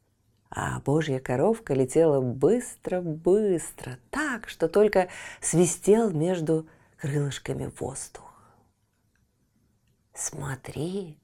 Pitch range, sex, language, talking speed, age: 135-215 Hz, female, Russian, 70 wpm, 30-49